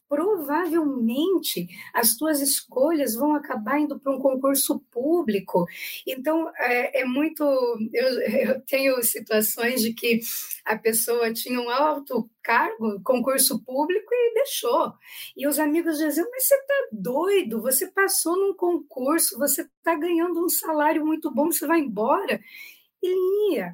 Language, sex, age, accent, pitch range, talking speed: Portuguese, female, 20-39, Brazilian, 230-300 Hz, 140 wpm